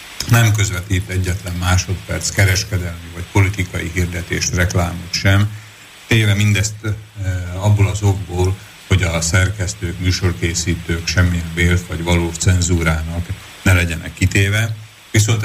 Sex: male